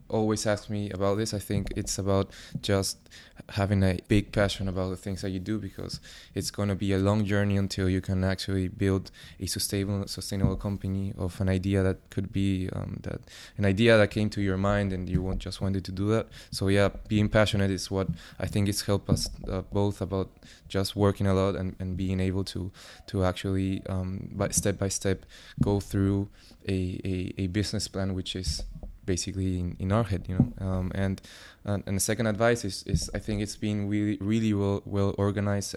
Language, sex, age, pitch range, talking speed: English, male, 20-39, 95-100 Hz, 210 wpm